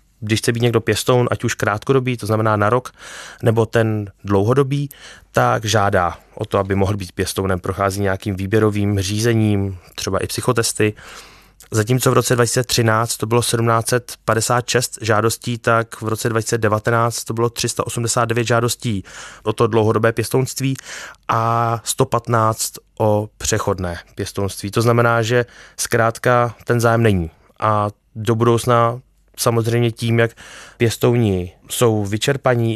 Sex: male